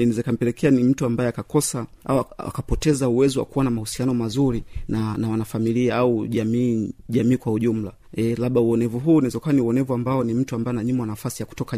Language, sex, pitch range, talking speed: Swahili, male, 115-135 Hz, 185 wpm